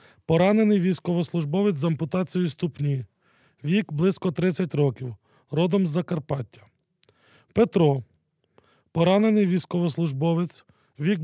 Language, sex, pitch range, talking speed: Ukrainian, male, 135-180 Hz, 85 wpm